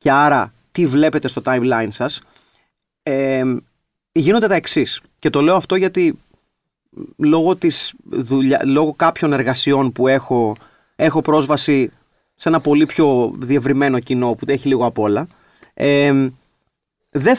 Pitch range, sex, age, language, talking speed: 135-190 Hz, male, 30-49, Greek, 135 wpm